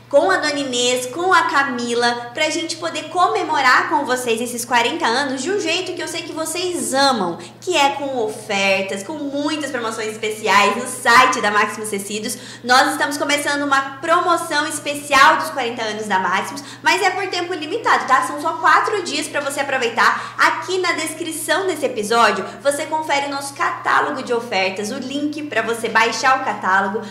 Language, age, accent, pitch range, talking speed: Portuguese, 20-39, Brazilian, 240-325 Hz, 180 wpm